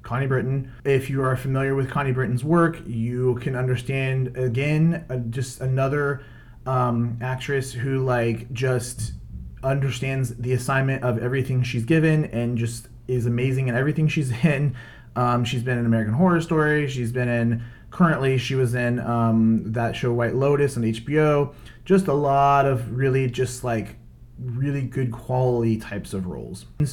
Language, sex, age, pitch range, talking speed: English, male, 30-49, 120-140 Hz, 160 wpm